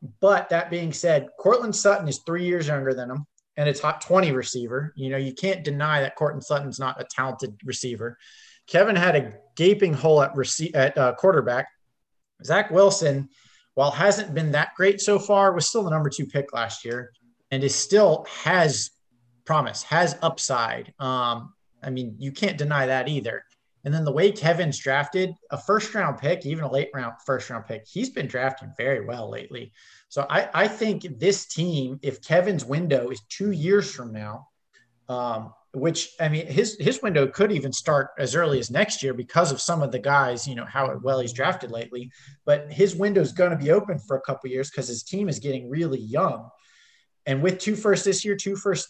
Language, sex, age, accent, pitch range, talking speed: English, male, 30-49, American, 135-185 Hz, 200 wpm